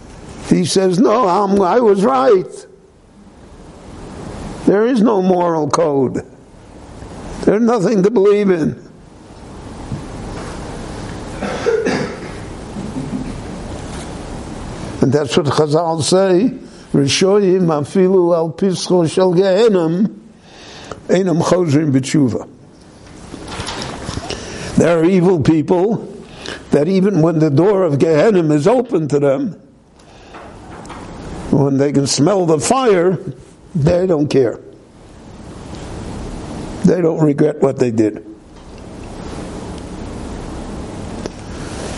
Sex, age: male, 60-79